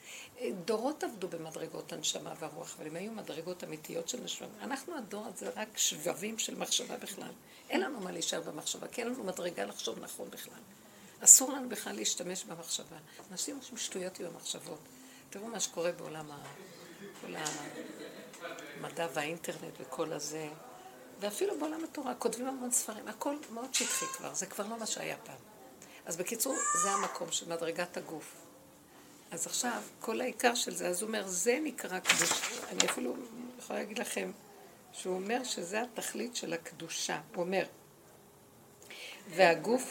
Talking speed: 150 wpm